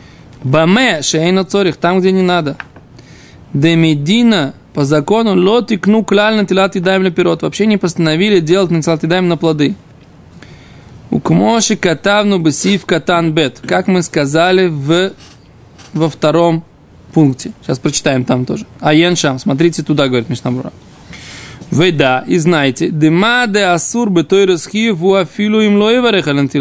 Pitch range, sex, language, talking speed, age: 145-190 Hz, male, Russian, 140 wpm, 20-39